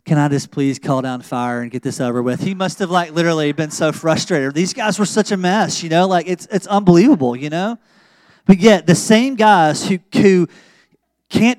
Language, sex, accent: English, male, American